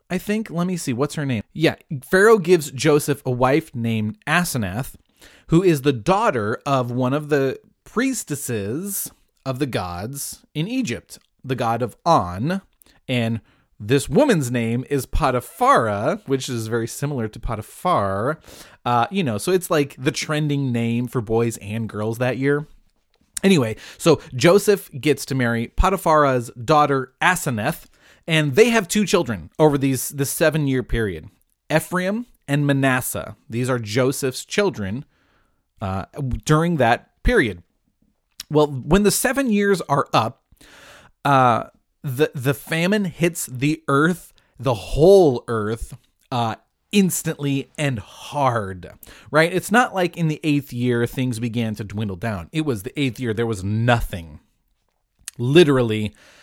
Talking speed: 140 wpm